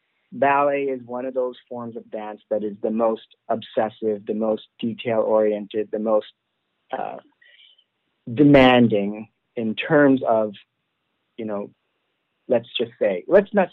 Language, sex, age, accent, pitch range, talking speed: English, male, 50-69, American, 115-145 Hz, 130 wpm